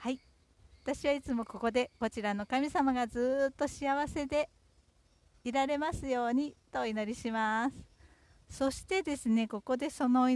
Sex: female